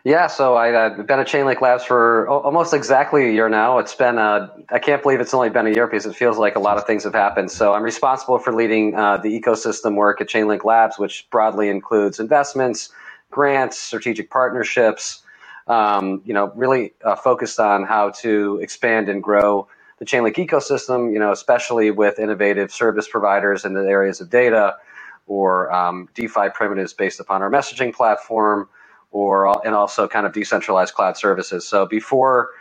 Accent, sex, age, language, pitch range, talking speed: American, male, 40-59, English, 105-130 Hz, 180 wpm